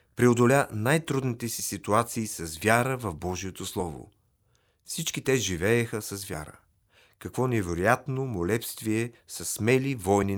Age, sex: 40-59, male